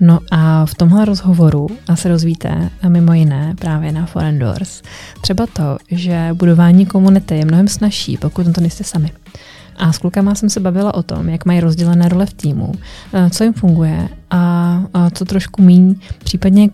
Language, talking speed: Czech, 185 wpm